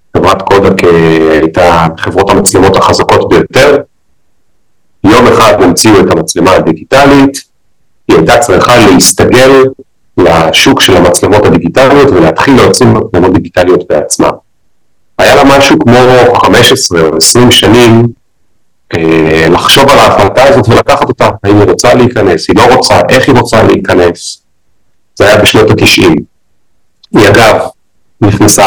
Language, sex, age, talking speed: Hebrew, male, 40-59, 120 wpm